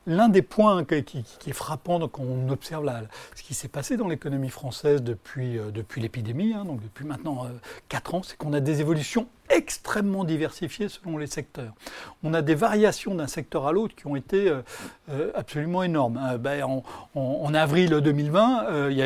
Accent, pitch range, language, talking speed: French, 135-185 Hz, French, 200 wpm